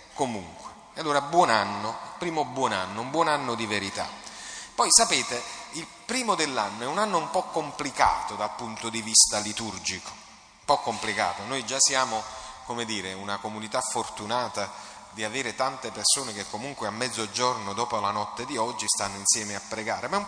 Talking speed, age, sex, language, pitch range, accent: 175 wpm, 30-49, male, Italian, 110-140 Hz, native